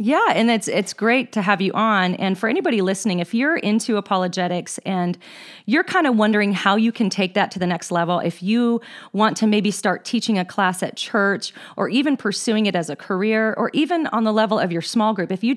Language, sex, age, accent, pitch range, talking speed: English, female, 40-59, American, 180-215 Hz, 230 wpm